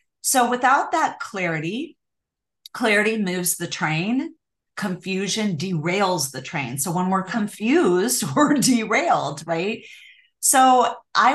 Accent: American